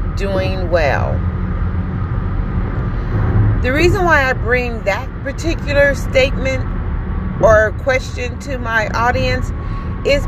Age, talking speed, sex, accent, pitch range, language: 40-59, 95 wpm, female, American, 90-110 Hz, English